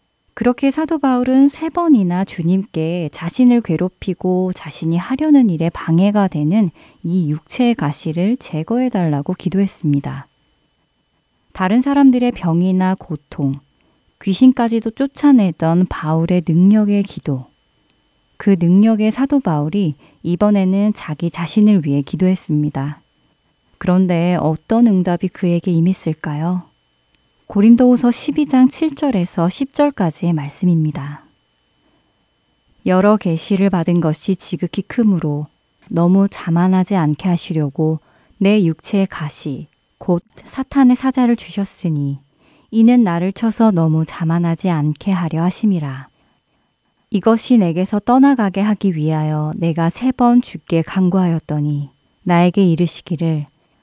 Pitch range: 160-210 Hz